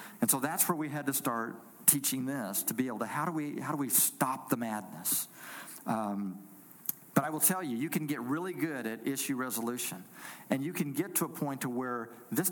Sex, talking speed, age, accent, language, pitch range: male, 225 wpm, 50-69, American, English, 110-150 Hz